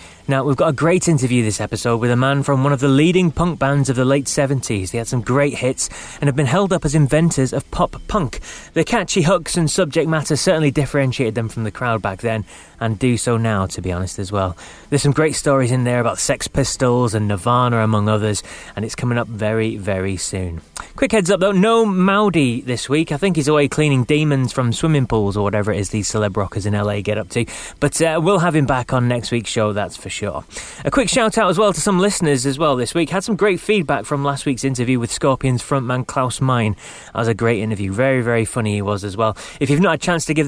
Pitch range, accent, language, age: 115-155 Hz, British, English, 20-39